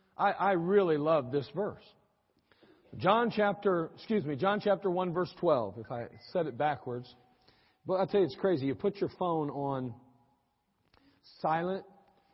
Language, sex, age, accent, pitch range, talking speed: English, male, 50-69, American, 130-180 Hz, 155 wpm